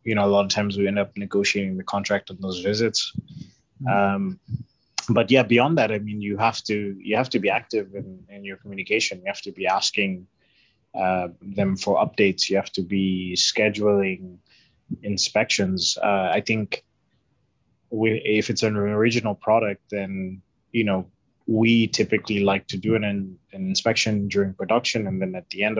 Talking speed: 175 wpm